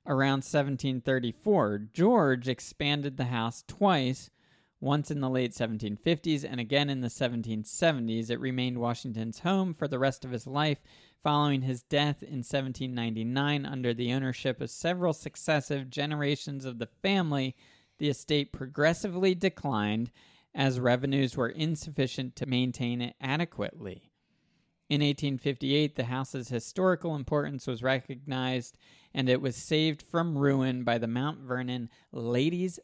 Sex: male